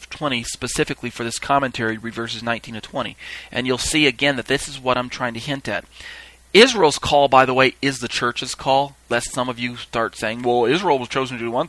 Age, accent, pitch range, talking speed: 30-49, American, 110-135 Hz, 225 wpm